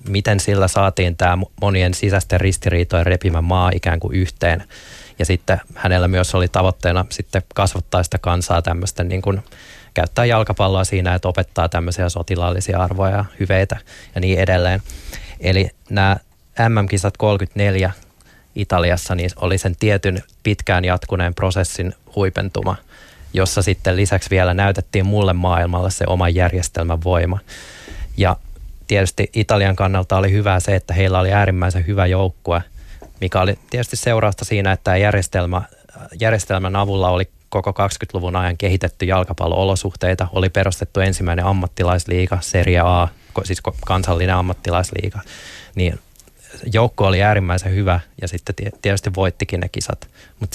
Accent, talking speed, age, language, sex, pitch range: native, 130 wpm, 20-39, Finnish, male, 90-100 Hz